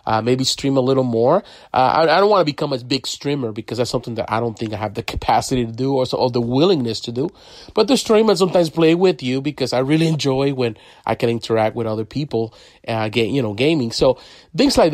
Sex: male